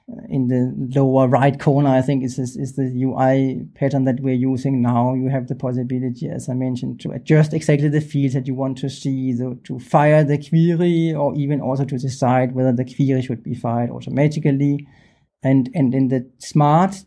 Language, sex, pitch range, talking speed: German, male, 135-160 Hz, 190 wpm